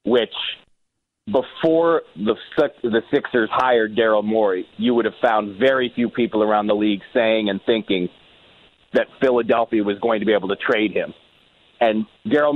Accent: American